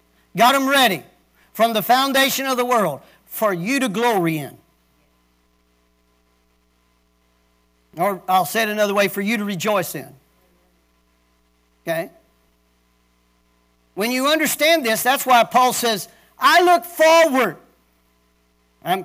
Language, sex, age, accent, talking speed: English, male, 50-69, American, 120 wpm